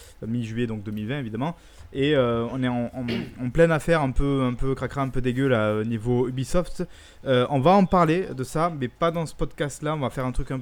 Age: 20-39